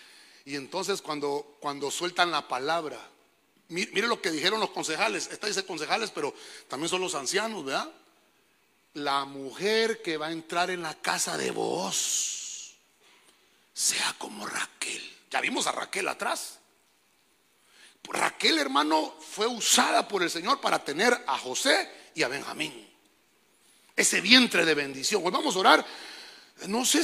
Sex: male